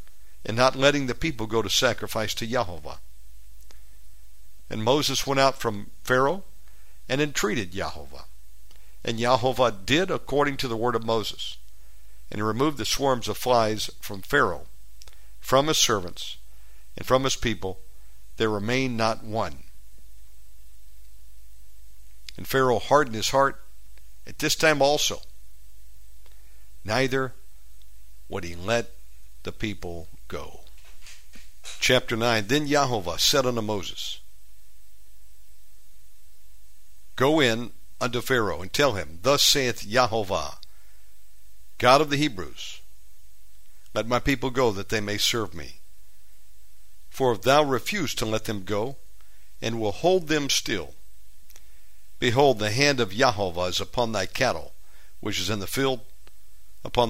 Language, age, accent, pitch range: English, 60-79, American, 95-130 Hz